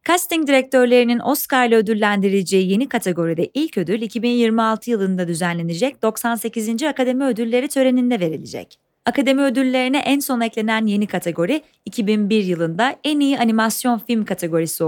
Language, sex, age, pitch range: Turkish, female, 30-49, 190-260 Hz